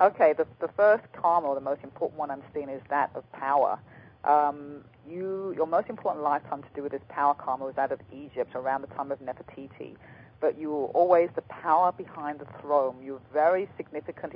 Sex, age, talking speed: female, 40-59, 210 wpm